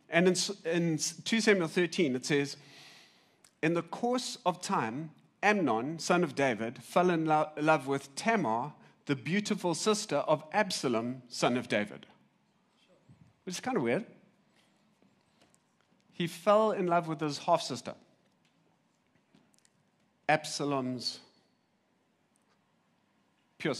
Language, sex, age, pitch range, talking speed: English, male, 40-59, 135-175 Hz, 110 wpm